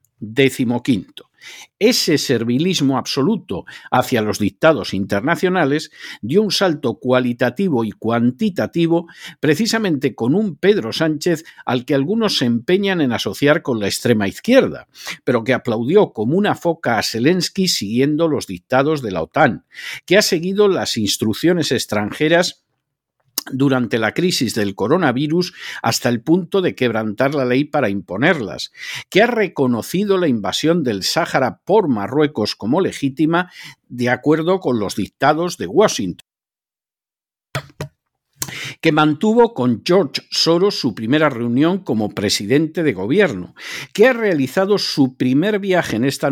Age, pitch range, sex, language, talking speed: 50-69, 120-170 Hz, male, Spanish, 135 wpm